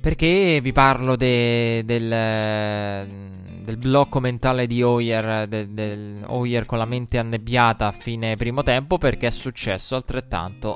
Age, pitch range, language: 20-39, 105-120 Hz, Italian